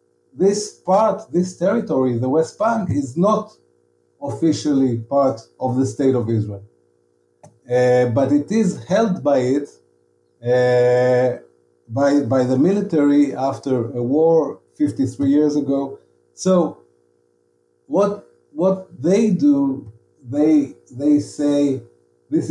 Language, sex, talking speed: English, male, 115 wpm